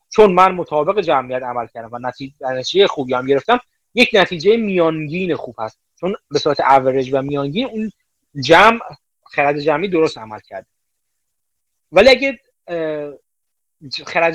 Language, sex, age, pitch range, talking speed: Persian, male, 30-49, 145-210 Hz, 135 wpm